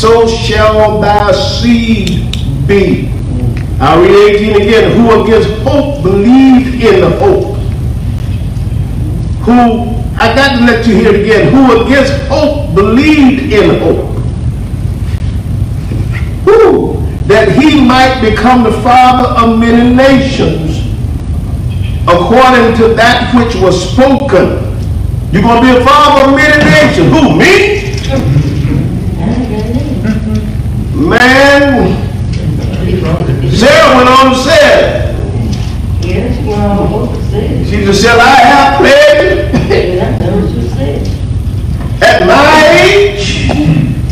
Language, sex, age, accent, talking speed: English, male, 50-69, American, 95 wpm